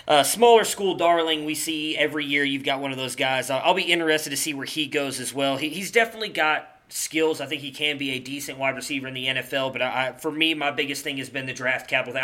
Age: 20-39